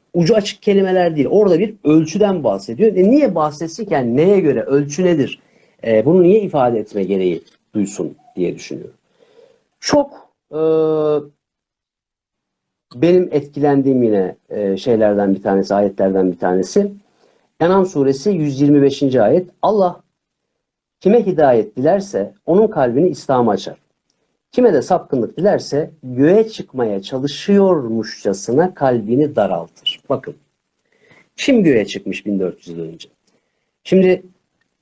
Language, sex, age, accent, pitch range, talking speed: Turkish, male, 50-69, native, 125-195 Hz, 110 wpm